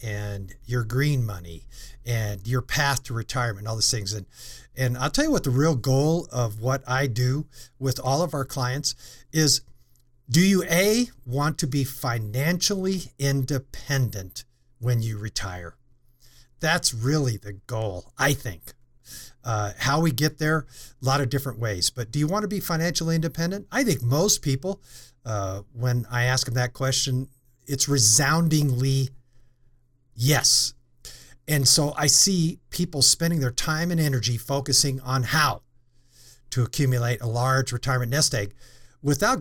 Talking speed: 155 wpm